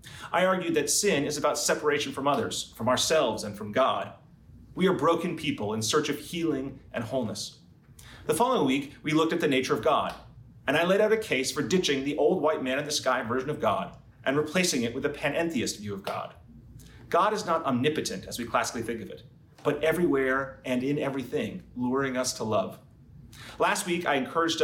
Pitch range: 125-165 Hz